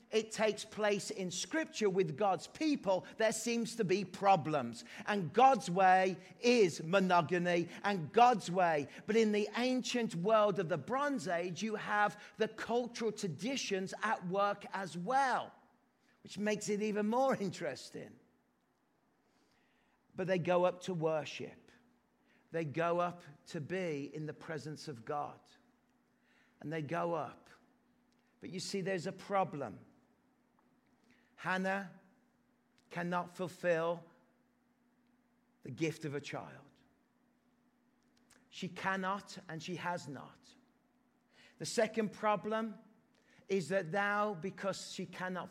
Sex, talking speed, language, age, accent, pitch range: male, 125 wpm, English, 40-59, British, 175-220 Hz